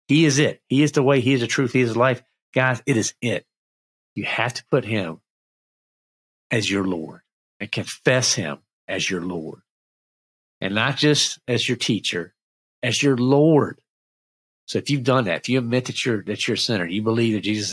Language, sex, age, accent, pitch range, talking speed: English, male, 50-69, American, 95-130 Hz, 195 wpm